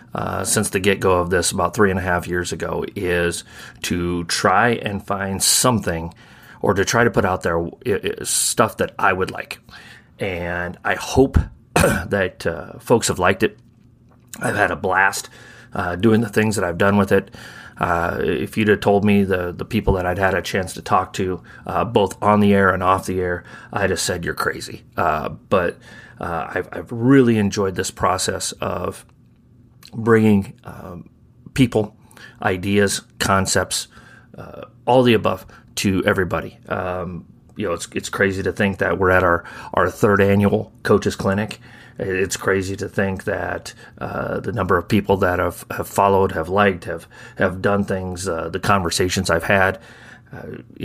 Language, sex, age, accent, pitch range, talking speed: English, male, 30-49, American, 90-110 Hz, 175 wpm